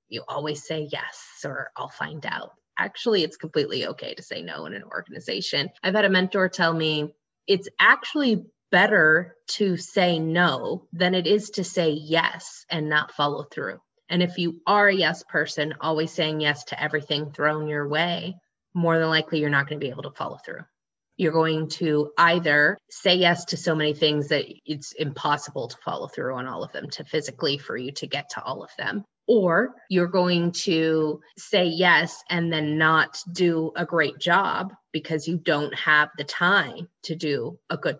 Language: English